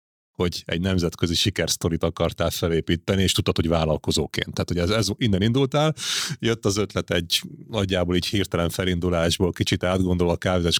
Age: 30-49